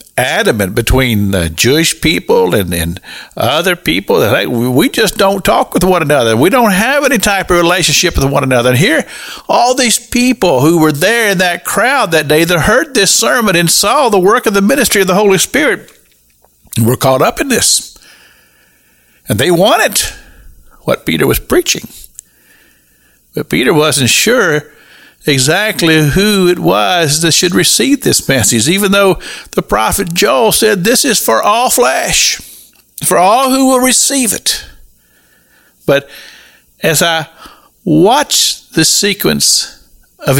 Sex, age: male, 50-69